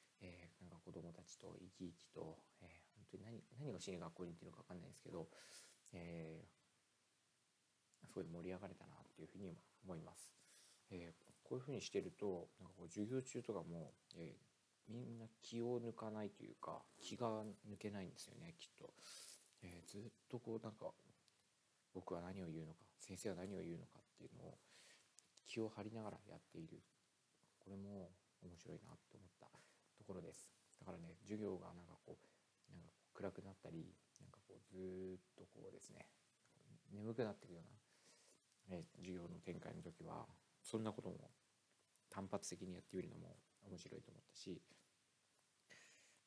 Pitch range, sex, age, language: 90-110 Hz, male, 40-59, Japanese